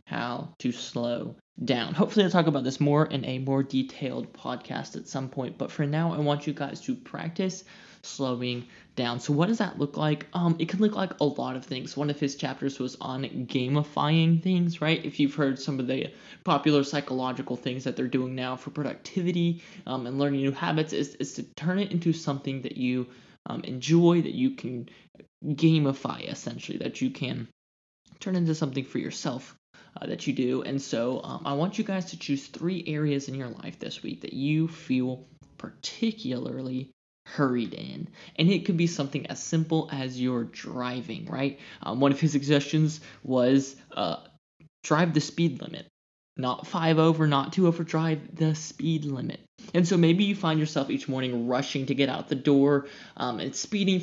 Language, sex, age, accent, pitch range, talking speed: English, male, 20-39, American, 130-165 Hz, 190 wpm